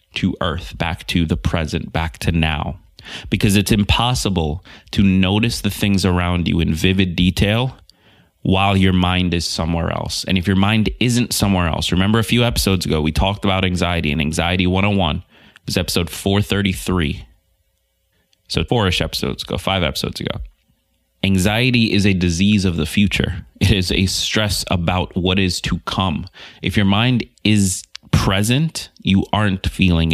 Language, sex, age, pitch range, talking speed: English, male, 30-49, 90-100 Hz, 160 wpm